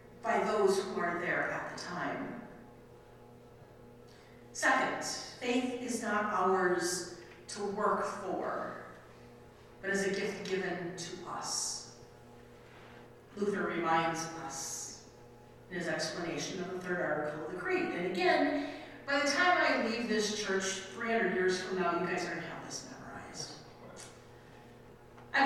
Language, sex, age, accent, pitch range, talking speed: English, female, 50-69, American, 180-245 Hz, 130 wpm